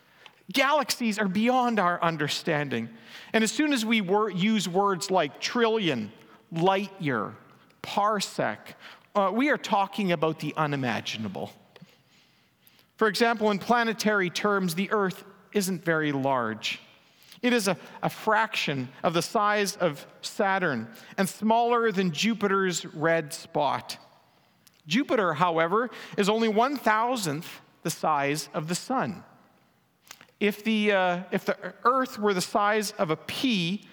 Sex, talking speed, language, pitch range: male, 125 wpm, English, 170-225 Hz